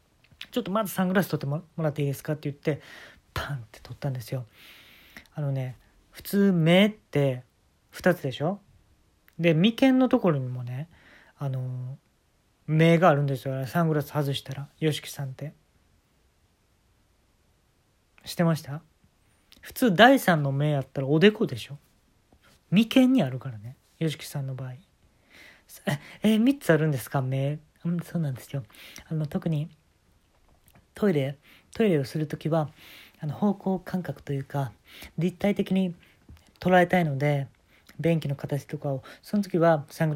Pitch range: 135-175 Hz